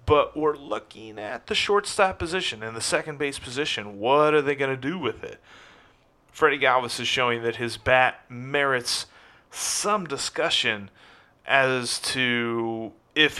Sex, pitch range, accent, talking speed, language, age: male, 115-145 Hz, American, 150 wpm, English, 30-49